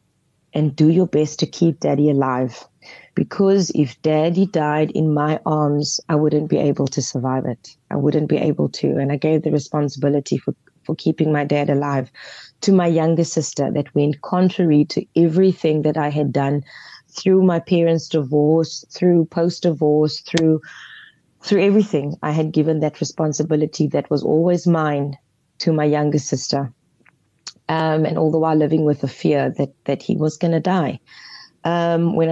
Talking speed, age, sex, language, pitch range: 165 wpm, 20-39, female, English, 145-160 Hz